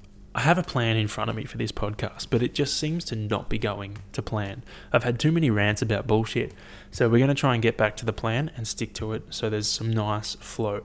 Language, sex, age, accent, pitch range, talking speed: English, male, 20-39, Australian, 105-125 Hz, 265 wpm